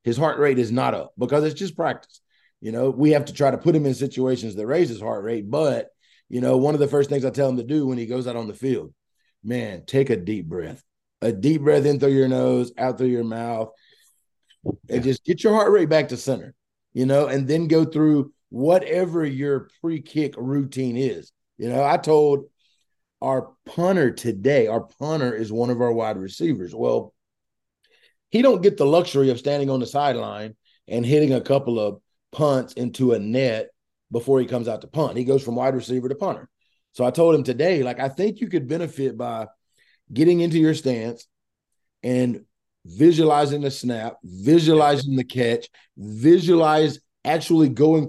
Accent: American